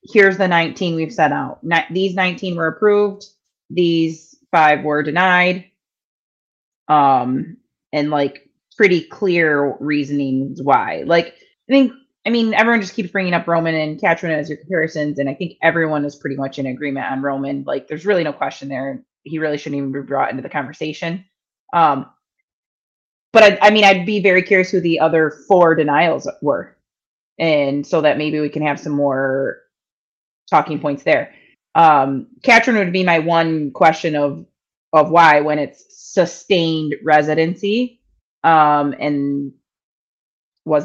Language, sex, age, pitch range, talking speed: English, female, 30-49, 145-185 Hz, 155 wpm